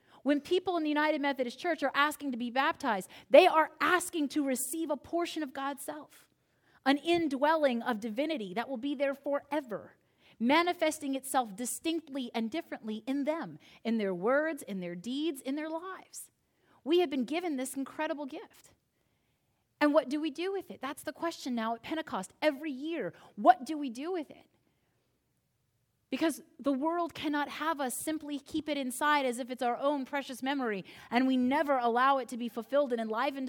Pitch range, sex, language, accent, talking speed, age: 255-315 Hz, female, English, American, 185 wpm, 30-49